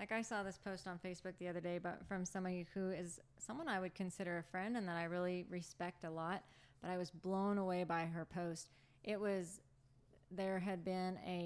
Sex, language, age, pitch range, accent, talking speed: female, English, 20-39, 175-195 Hz, American, 220 wpm